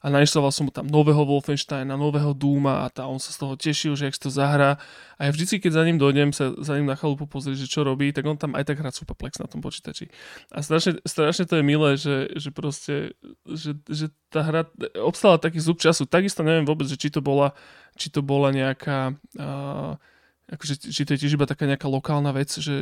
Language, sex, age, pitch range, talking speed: Slovak, male, 20-39, 140-155 Hz, 225 wpm